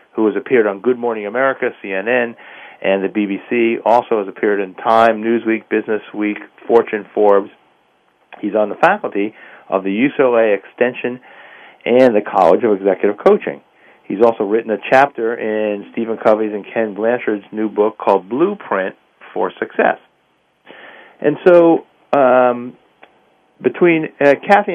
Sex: male